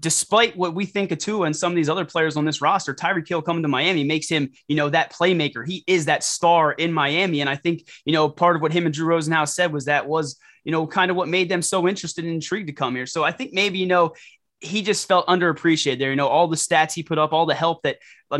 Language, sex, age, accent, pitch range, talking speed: English, male, 20-39, American, 145-175 Hz, 280 wpm